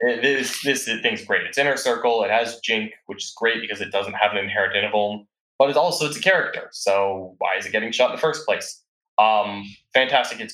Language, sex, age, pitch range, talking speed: English, male, 20-39, 105-145 Hz, 220 wpm